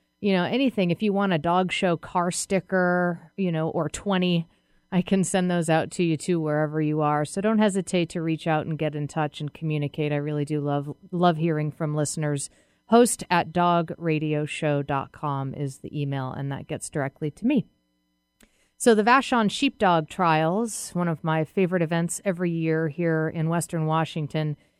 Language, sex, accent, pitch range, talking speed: English, female, American, 150-180 Hz, 180 wpm